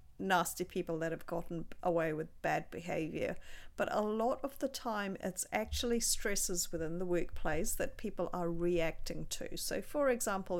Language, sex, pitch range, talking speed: English, female, 165-210 Hz, 165 wpm